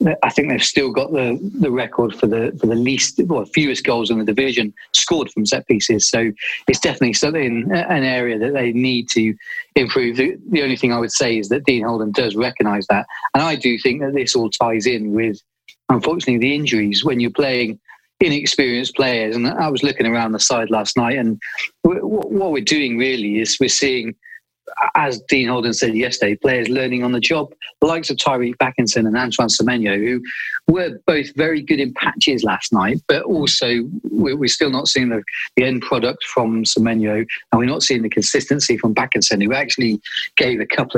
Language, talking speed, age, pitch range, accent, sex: English, 195 wpm, 40-59, 115-135 Hz, British, male